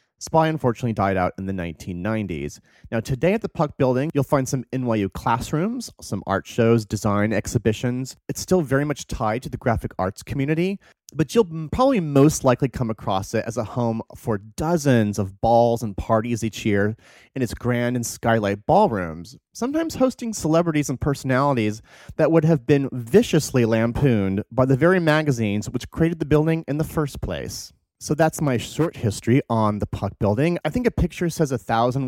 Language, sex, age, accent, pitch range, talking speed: English, male, 30-49, American, 110-145 Hz, 180 wpm